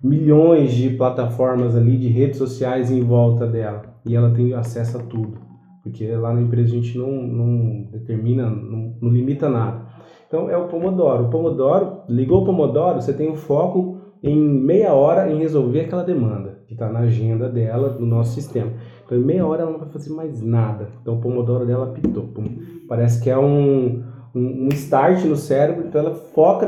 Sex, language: male, Portuguese